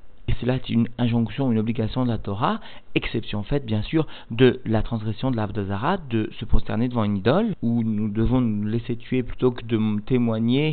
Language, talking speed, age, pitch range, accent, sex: French, 200 wpm, 40-59, 110-130 Hz, French, male